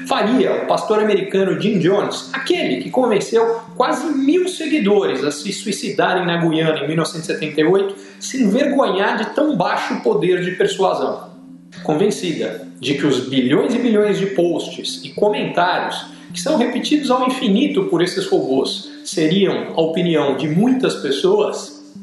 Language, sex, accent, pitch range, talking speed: Portuguese, male, Brazilian, 170-220 Hz, 140 wpm